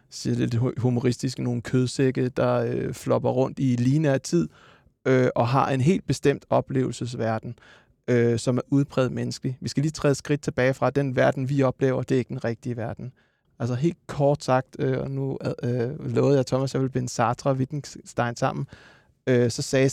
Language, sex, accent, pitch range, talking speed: Danish, male, native, 125-150 Hz, 195 wpm